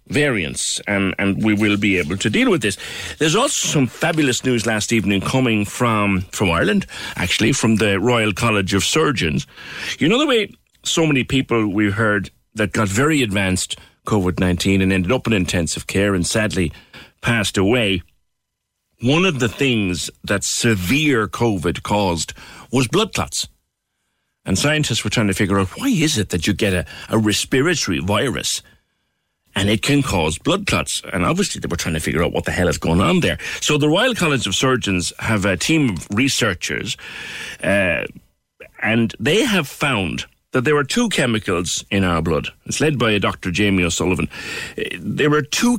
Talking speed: 180 wpm